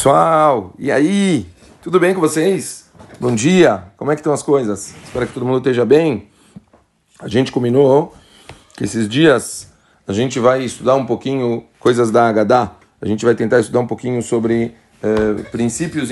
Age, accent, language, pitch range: 40-59, Brazilian, Portuguese, 115-145 Hz